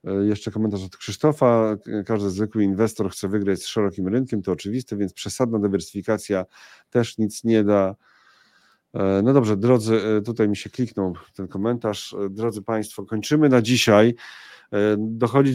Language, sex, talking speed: Polish, male, 140 wpm